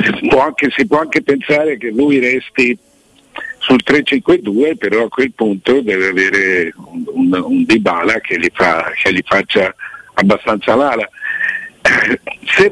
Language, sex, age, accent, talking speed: Italian, male, 60-79, native, 135 wpm